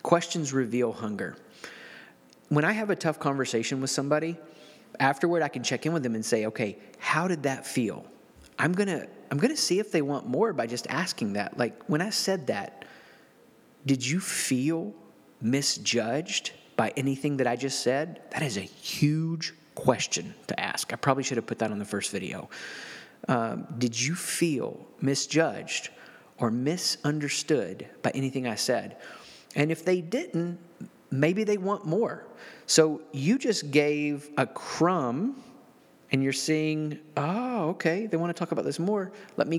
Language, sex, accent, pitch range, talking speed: English, male, American, 115-165 Hz, 165 wpm